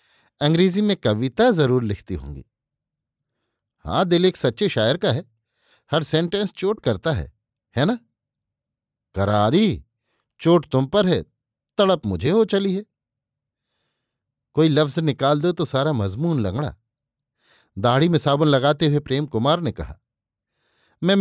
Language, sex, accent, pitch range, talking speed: Hindi, male, native, 120-160 Hz, 135 wpm